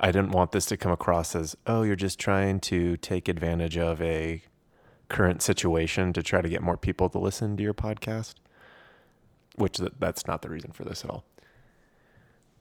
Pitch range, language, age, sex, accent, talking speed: 90-100 Hz, English, 20-39, male, American, 190 wpm